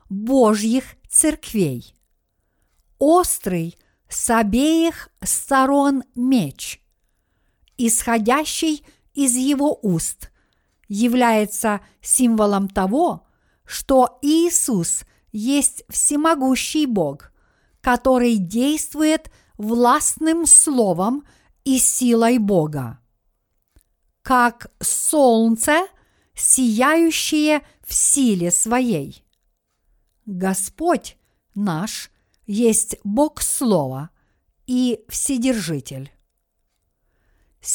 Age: 50-69